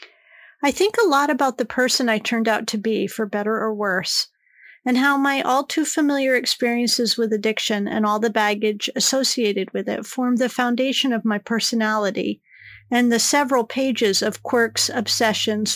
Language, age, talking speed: English, 40-59, 165 wpm